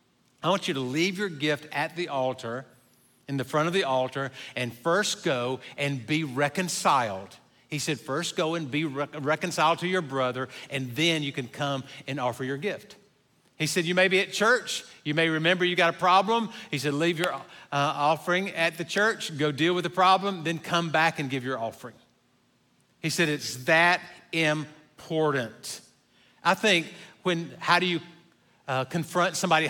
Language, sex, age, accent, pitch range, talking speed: English, male, 50-69, American, 145-180 Hz, 180 wpm